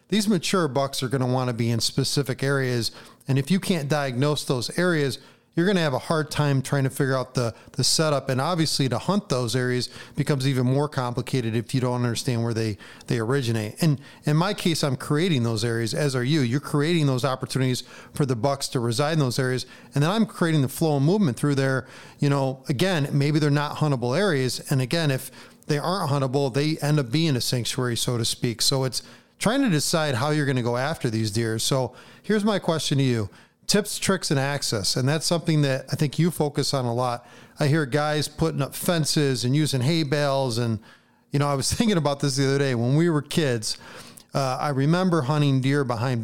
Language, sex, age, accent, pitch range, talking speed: English, male, 40-59, American, 125-155 Hz, 225 wpm